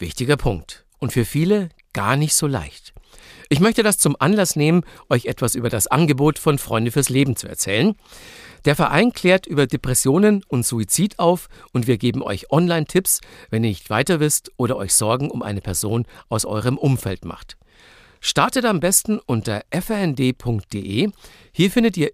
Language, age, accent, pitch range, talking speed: German, 50-69, German, 110-160 Hz, 170 wpm